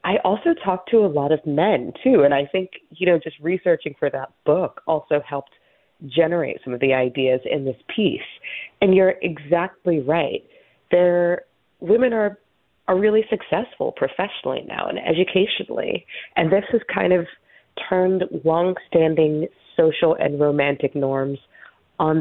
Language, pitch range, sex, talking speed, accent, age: English, 150-195 Hz, female, 145 wpm, American, 30-49